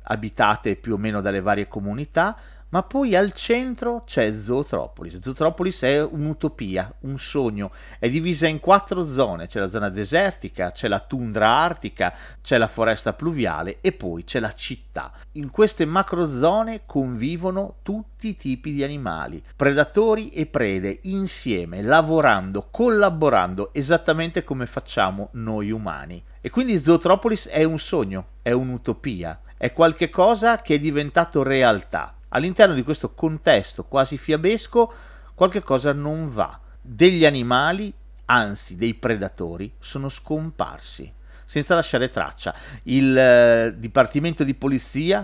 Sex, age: male, 40-59